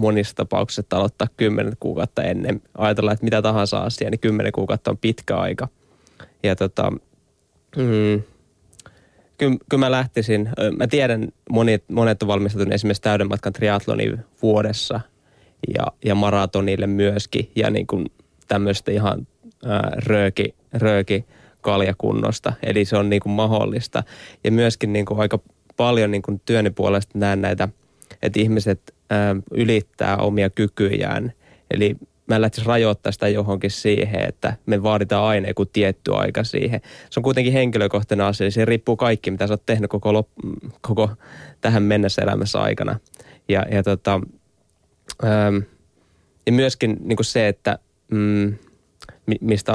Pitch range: 100-115 Hz